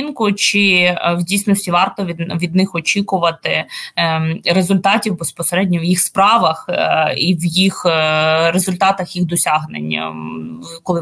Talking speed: 110 wpm